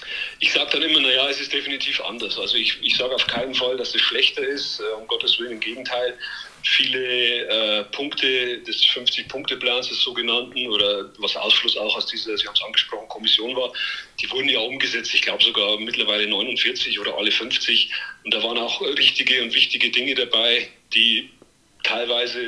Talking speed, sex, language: 180 wpm, male, German